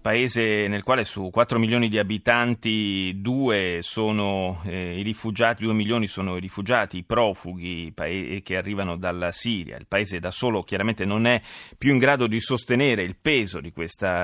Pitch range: 100-120 Hz